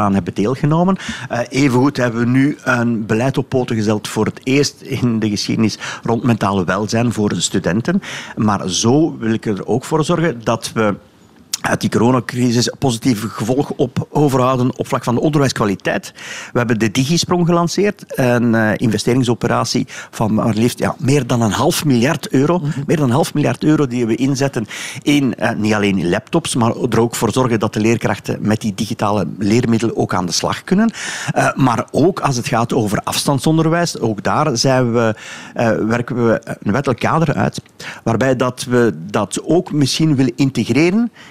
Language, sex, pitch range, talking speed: Dutch, male, 110-140 Hz, 180 wpm